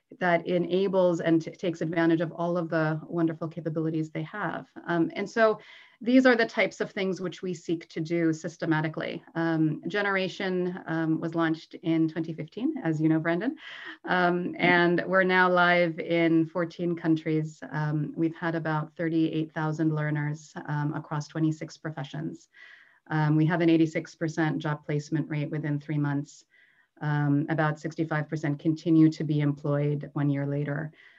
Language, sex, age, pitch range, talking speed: English, female, 30-49, 155-175 Hz, 150 wpm